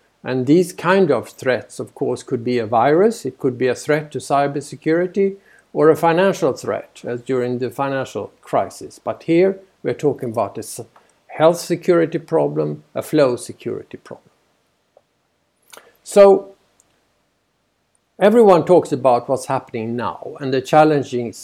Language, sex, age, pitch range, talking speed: English, male, 50-69, 130-175 Hz, 145 wpm